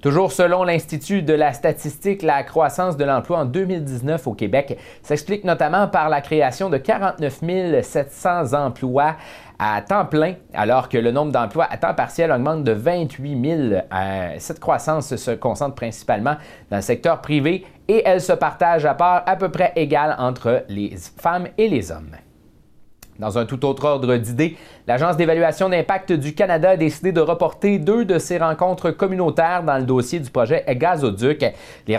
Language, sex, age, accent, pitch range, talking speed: French, male, 30-49, Canadian, 140-190 Hz, 170 wpm